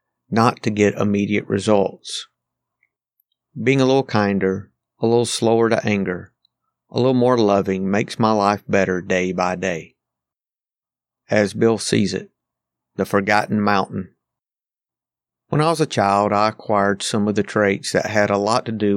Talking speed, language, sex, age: 155 wpm, English, male, 50-69